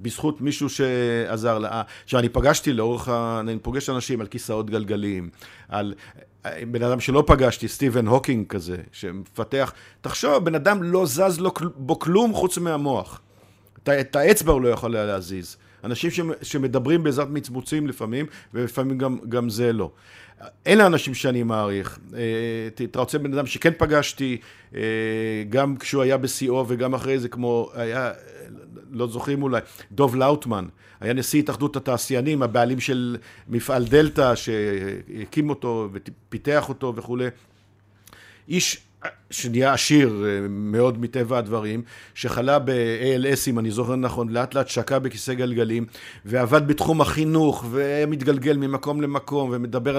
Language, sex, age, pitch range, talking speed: Hebrew, male, 50-69, 110-140 Hz, 125 wpm